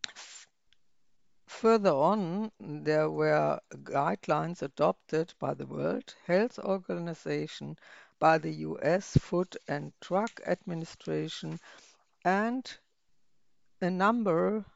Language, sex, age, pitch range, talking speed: English, female, 60-79, 155-200 Hz, 85 wpm